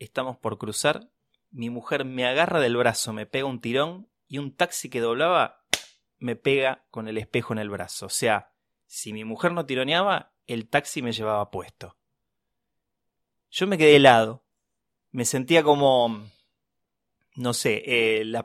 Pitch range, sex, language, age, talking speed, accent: 120-185 Hz, male, Spanish, 20-39, 160 wpm, Argentinian